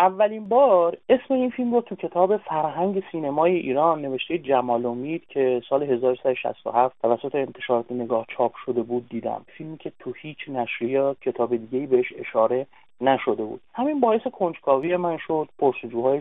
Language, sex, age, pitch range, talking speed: Persian, male, 30-49, 130-205 Hz, 155 wpm